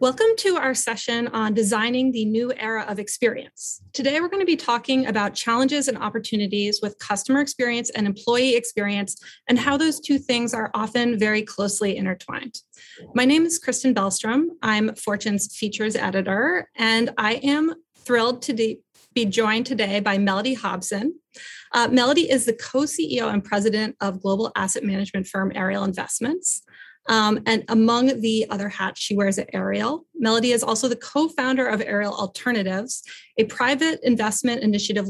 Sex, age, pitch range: female, 30-49, 210-260 Hz